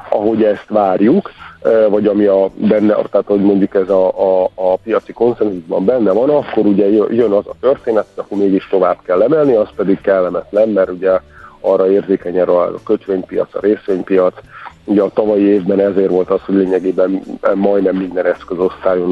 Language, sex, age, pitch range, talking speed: Hungarian, male, 50-69, 95-110 Hz, 165 wpm